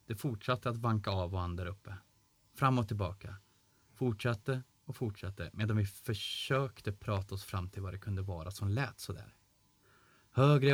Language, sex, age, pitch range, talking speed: Swedish, male, 20-39, 100-120 Hz, 160 wpm